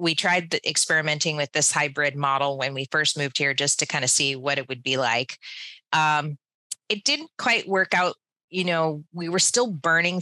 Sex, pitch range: female, 140-175 Hz